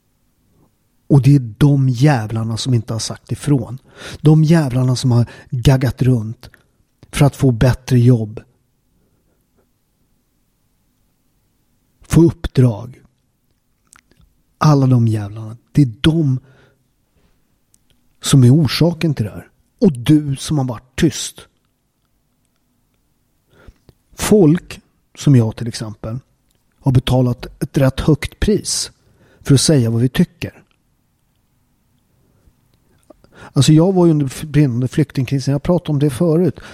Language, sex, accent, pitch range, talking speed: Swedish, male, native, 120-150 Hz, 115 wpm